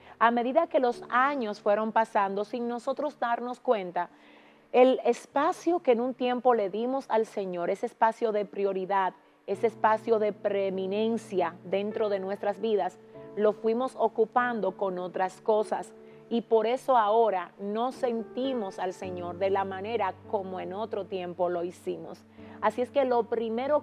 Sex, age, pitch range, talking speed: female, 40-59, 195-235 Hz, 155 wpm